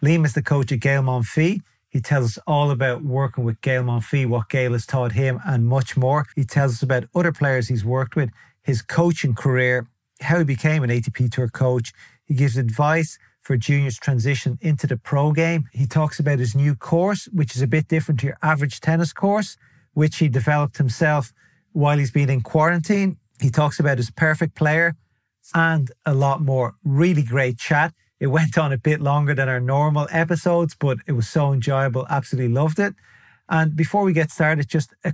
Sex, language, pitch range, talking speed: male, English, 130-155 Hz, 200 wpm